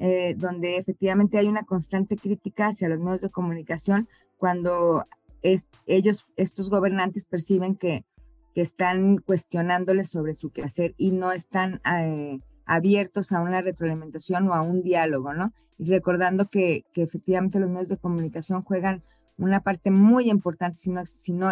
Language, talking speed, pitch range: Spanish, 150 wpm, 170-200 Hz